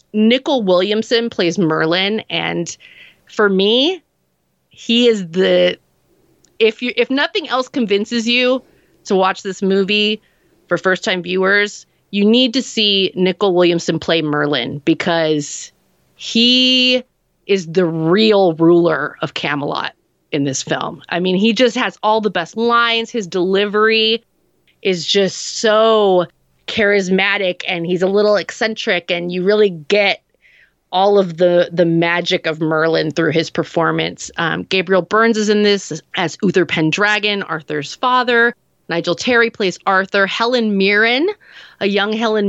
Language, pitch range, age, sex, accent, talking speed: English, 180-225 Hz, 30-49, female, American, 135 wpm